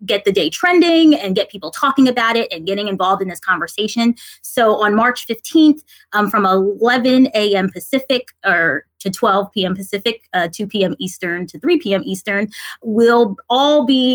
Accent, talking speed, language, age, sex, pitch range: American, 175 wpm, English, 20-39, female, 190-245 Hz